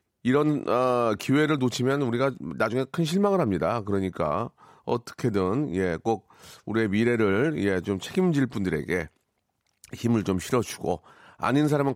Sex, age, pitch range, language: male, 40-59, 105-150 Hz, Korean